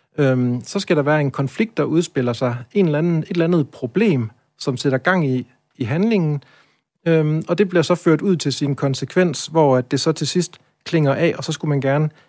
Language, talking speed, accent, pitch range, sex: Danish, 190 wpm, native, 125-160 Hz, male